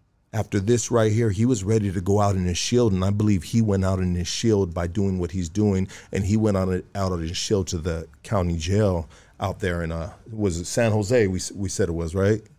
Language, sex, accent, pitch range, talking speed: English, male, American, 95-120 Hz, 250 wpm